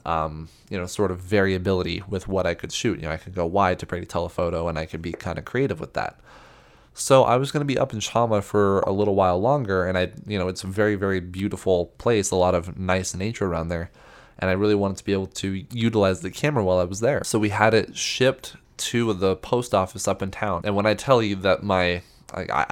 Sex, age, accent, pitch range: male, 20-39, American, 90-105 Hz